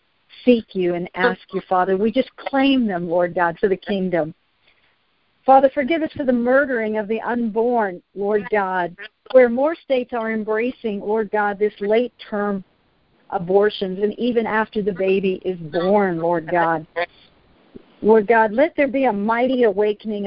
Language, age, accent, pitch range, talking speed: English, 50-69, American, 190-235 Hz, 155 wpm